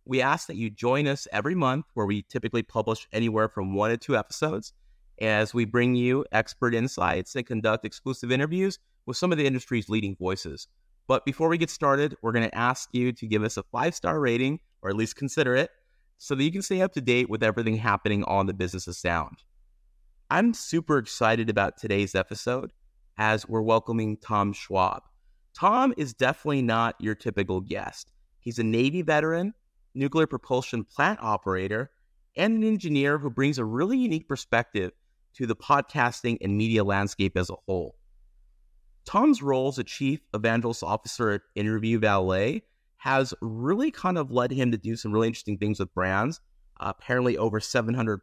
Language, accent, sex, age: English, American, male, 30-49